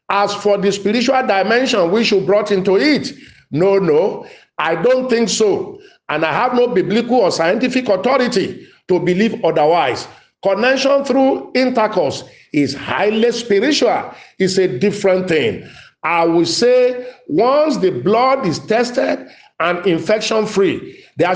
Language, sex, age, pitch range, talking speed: English, male, 50-69, 180-245 Hz, 135 wpm